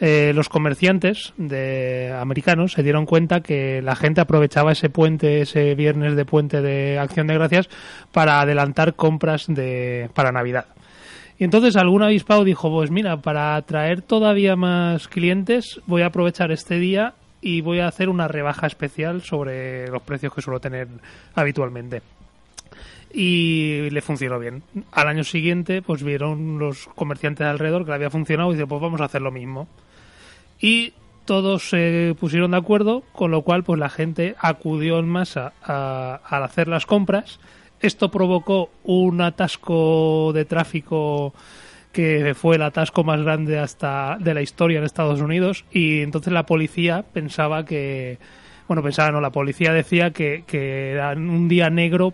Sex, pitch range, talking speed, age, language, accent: male, 145-175 Hz, 165 wpm, 30-49, Spanish, Spanish